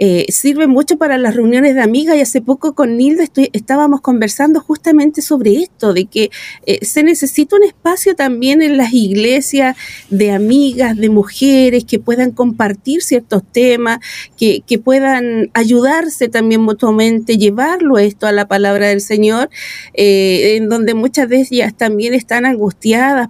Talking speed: 155 wpm